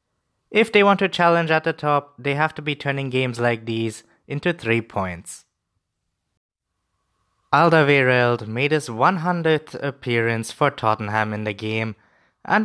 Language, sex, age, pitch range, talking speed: English, male, 20-39, 110-160 Hz, 140 wpm